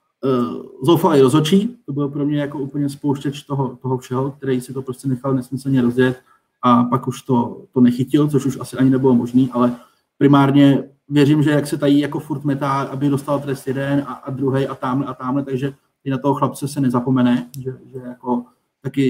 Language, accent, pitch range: Czech, native, 130-150 Hz